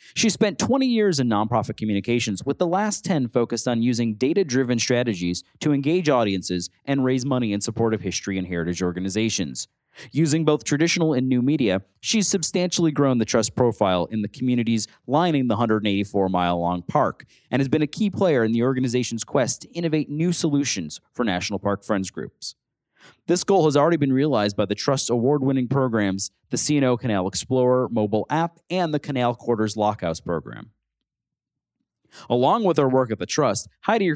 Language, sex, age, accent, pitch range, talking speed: English, male, 30-49, American, 105-145 Hz, 175 wpm